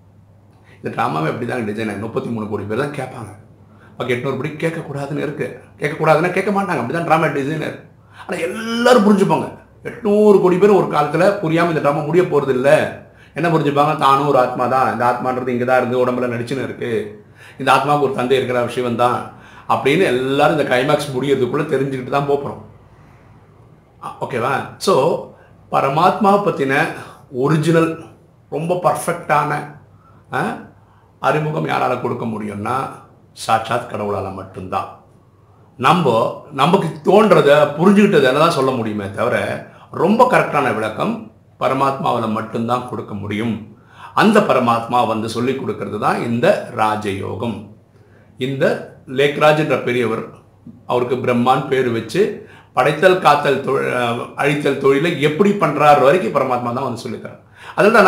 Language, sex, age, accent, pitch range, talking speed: Tamil, male, 50-69, native, 115-155 Hz, 120 wpm